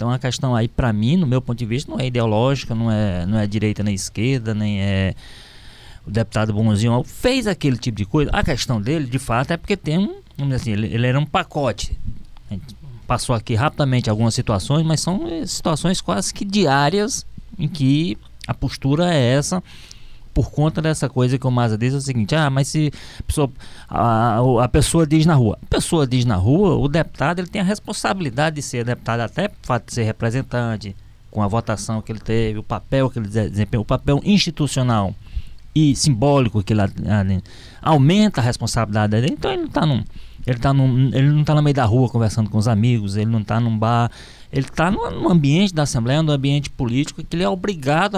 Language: Portuguese